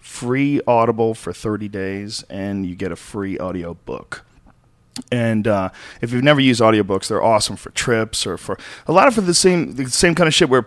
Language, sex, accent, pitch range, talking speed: English, male, American, 105-135 Hz, 200 wpm